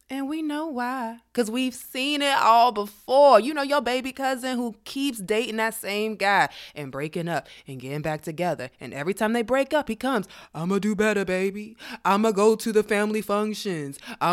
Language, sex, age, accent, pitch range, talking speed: English, female, 20-39, American, 185-240 Hz, 215 wpm